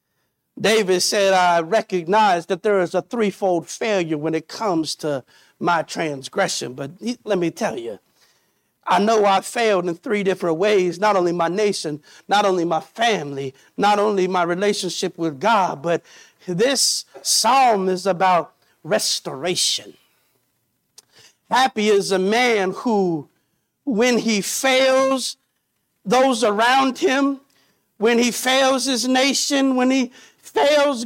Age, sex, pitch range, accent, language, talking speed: 50-69, male, 195-290 Hz, American, English, 130 wpm